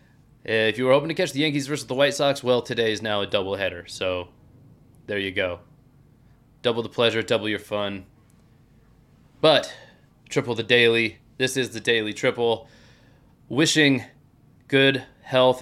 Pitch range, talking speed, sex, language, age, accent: 110-130 Hz, 155 wpm, male, English, 30-49, American